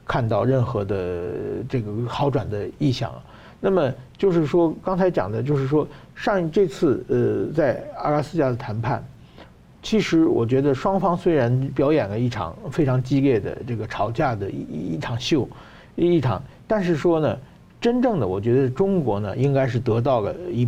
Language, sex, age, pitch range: Chinese, male, 50-69, 120-160 Hz